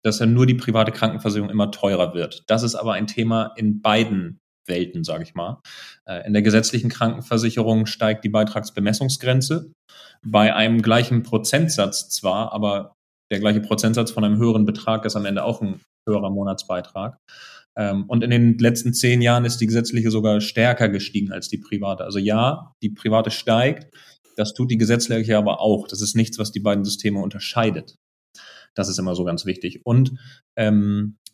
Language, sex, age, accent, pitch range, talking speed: German, male, 30-49, German, 105-115 Hz, 170 wpm